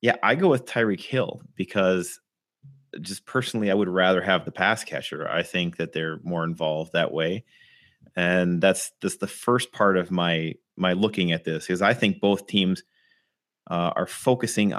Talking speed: 180 wpm